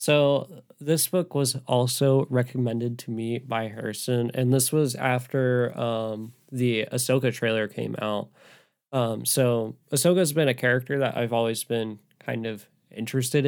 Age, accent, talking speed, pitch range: 10-29, American, 145 wpm, 115-135 Hz